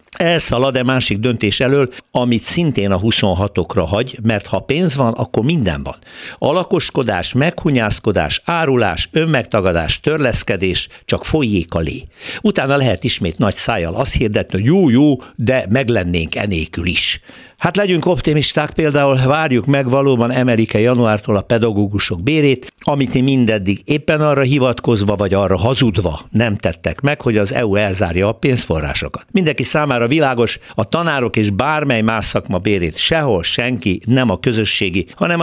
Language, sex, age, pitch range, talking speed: Hungarian, male, 60-79, 95-135 Hz, 145 wpm